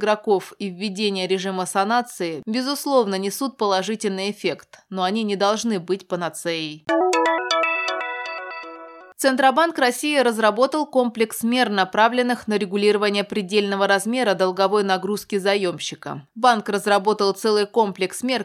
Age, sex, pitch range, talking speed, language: 20-39, female, 175-220 Hz, 105 wpm, Russian